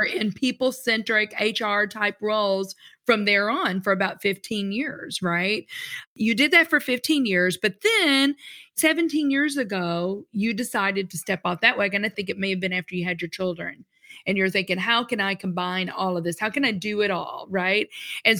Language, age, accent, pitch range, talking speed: English, 40-59, American, 185-240 Hz, 190 wpm